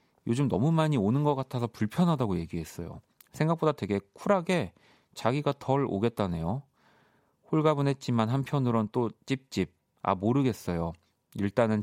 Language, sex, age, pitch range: Korean, male, 40-59, 95-130 Hz